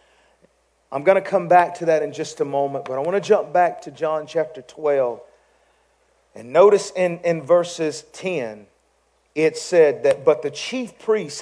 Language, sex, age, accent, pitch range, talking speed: English, male, 40-59, American, 140-180 Hz, 180 wpm